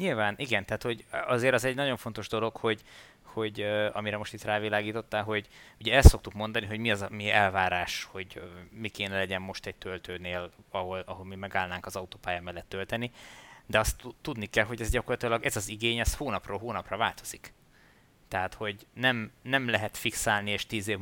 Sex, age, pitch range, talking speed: male, 20-39, 95-115 Hz, 190 wpm